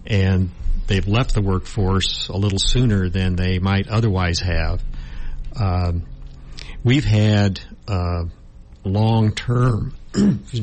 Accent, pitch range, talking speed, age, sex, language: American, 85-105 Hz, 105 wpm, 60-79, male, English